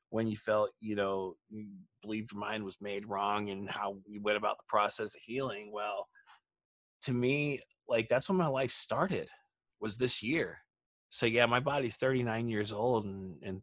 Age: 30-49